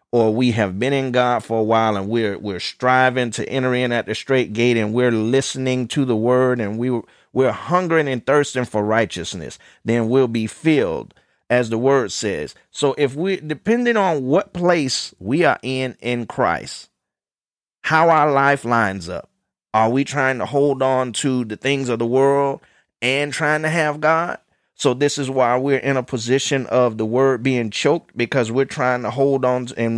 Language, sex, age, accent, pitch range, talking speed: English, male, 30-49, American, 120-140 Hz, 190 wpm